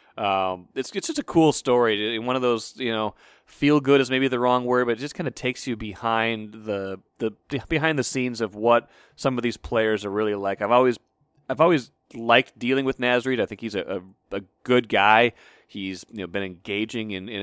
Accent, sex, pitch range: American, male, 110-130 Hz